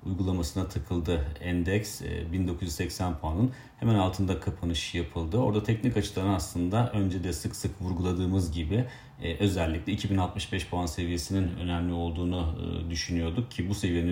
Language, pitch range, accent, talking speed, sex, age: Turkish, 85-105 Hz, native, 125 wpm, male, 40-59